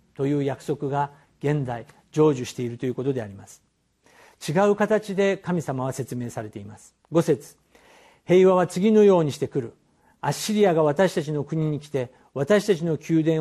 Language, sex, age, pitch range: Japanese, male, 50-69, 140-185 Hz